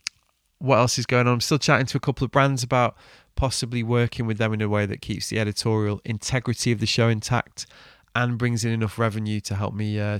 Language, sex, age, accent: English, male, 20-39, British